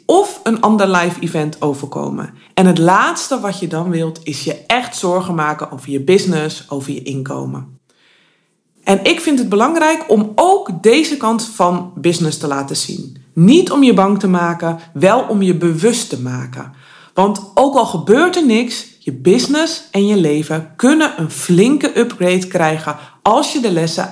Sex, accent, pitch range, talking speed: female, Dutch, 155-230 Hz, 175 wpm